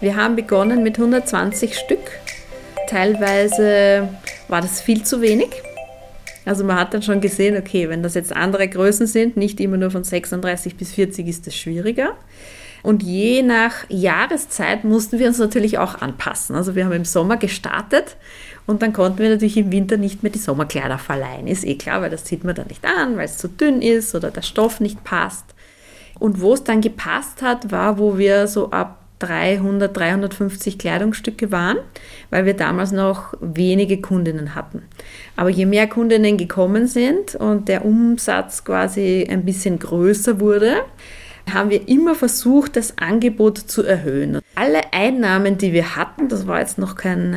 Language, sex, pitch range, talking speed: German, female, 180-220 Hz, 175 wpm